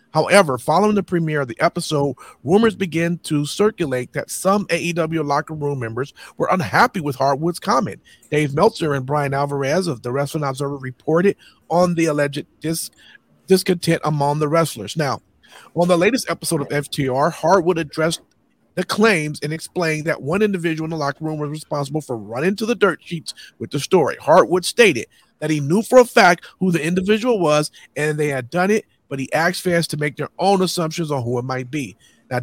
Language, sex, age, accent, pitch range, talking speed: English, male, 40-59, American, 145-175 Hz, 190 wpm